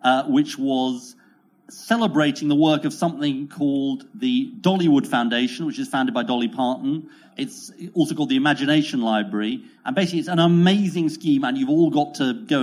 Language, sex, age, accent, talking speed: English, male, 40-59, British, 170 wpm